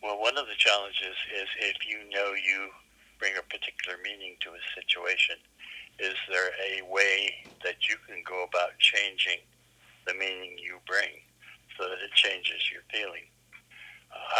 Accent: American